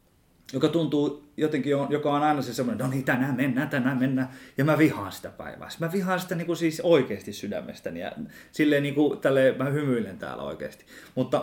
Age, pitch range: 20-39, 130-160 Hz